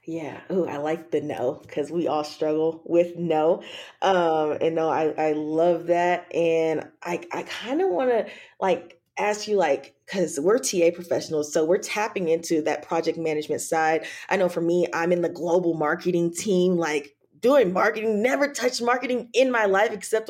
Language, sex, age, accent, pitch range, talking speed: English, female, 20-39, American, 165-220 Hz, 185 wpm